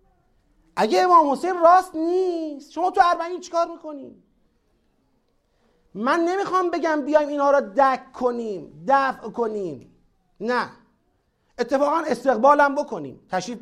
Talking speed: 110 wpm